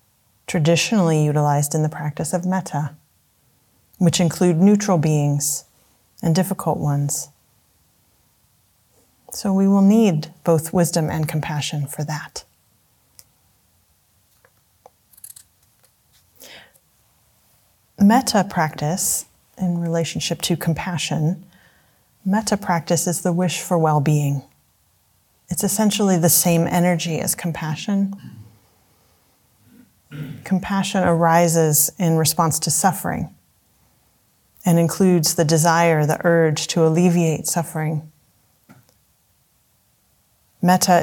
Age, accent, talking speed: 30-49, American, 90 wpm